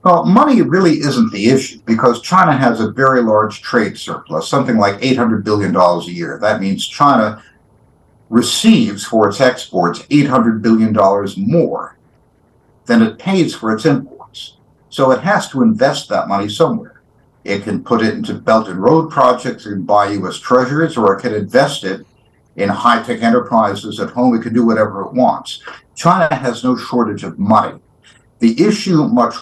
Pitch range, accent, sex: 105-155 Hz, American, male